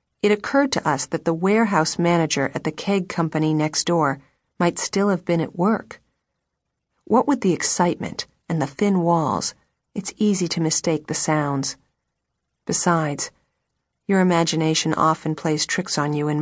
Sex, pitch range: female, 155-185 Hz